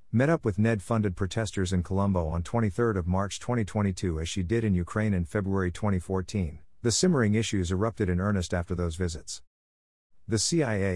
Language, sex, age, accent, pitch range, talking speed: English, male, 50-69, American, 90-115 Hz, 165 wpm